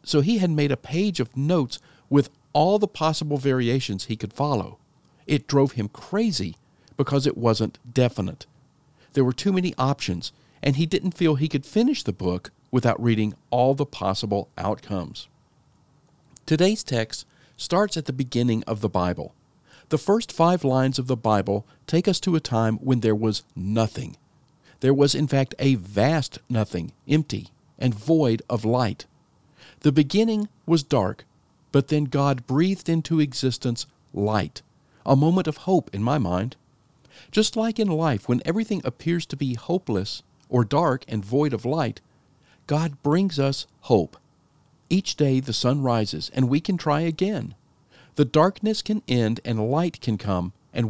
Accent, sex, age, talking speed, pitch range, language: American, male, 50-69, 165 wpm, 120-160 Hz, English